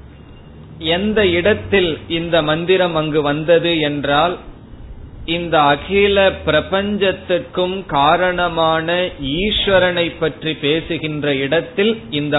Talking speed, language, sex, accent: 75 wpm, Tamil, male, native